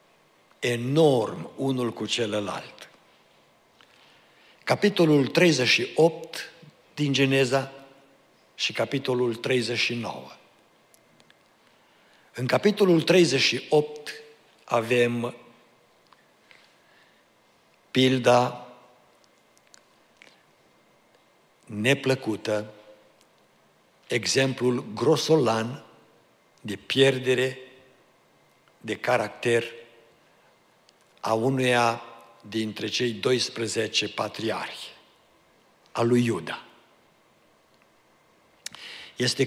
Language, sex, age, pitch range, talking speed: Romanian, male, 60-79, 115-140 Hz, 50 wpm